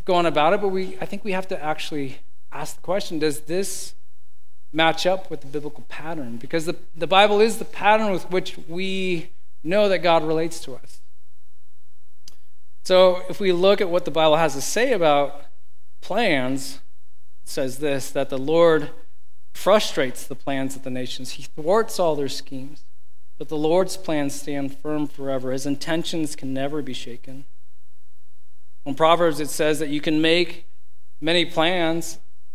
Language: English